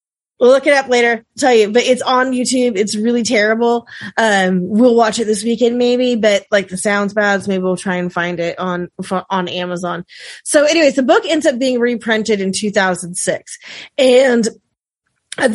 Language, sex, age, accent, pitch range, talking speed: English, female, 30-49, American, 210-255 Hz, 190 wpm